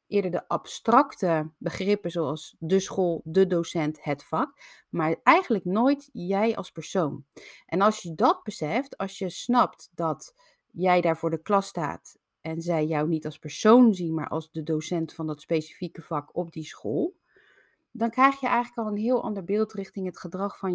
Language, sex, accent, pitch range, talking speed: Dutch, female, Dutch, 160-210 Hz, 180 wpm